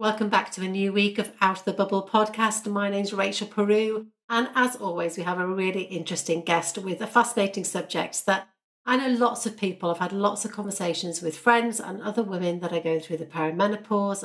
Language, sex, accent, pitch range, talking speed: English, female, British, 175-215 Hz, 215 wpm